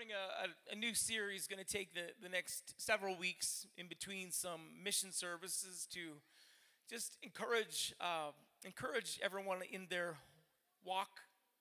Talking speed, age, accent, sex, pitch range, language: 135 wpm, 40-59, American, male, 190-235 Hz, English